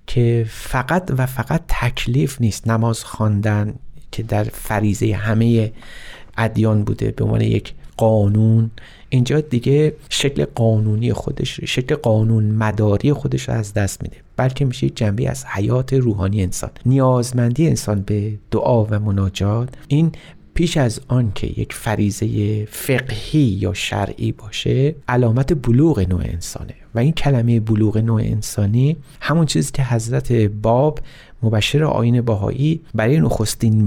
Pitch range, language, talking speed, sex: 105-130 Hz, Persian, 135 wpm, male